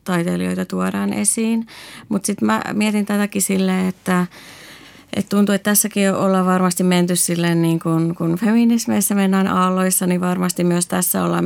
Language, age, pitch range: Finnish, 30-49, 125-185 Hz